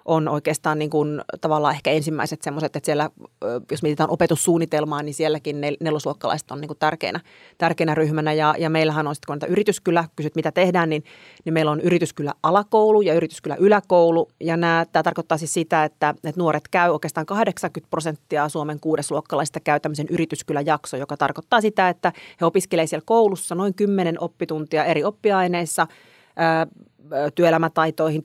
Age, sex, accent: 30-49, female, native